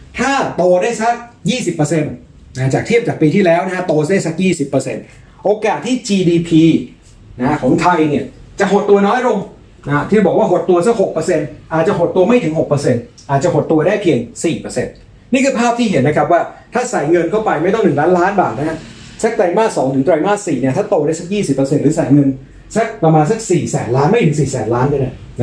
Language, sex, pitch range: Thai, male, 140-185 Hz